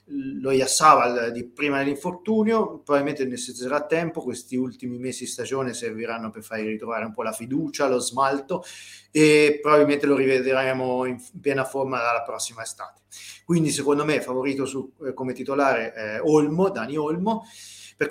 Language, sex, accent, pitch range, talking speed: Italian, male, native, 115-150 Hz, 145 wpm